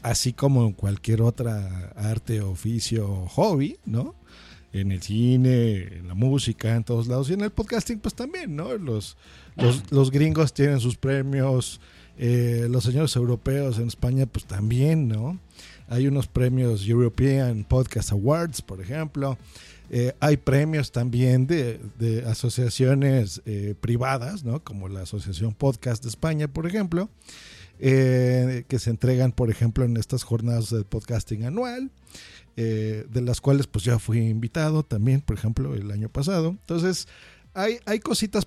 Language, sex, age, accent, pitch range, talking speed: Spanish, male, 50-69, Mexican, 115-145 Hz, 150 wpm